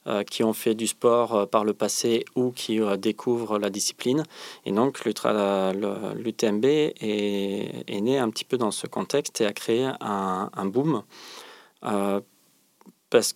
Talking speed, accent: 150 wpm, French